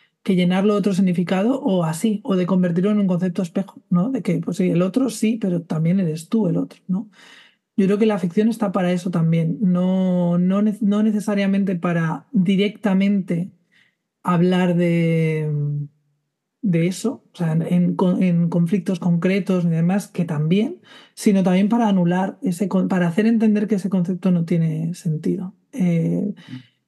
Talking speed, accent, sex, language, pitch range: 160 wpm, Spanish, male, Spanish, 175-205 Hz